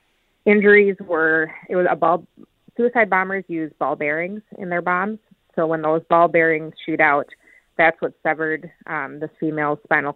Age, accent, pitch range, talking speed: 30-49, American, 155-175 Hz, 165 wpm